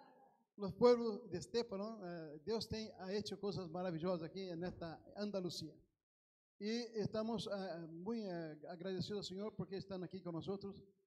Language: Spanish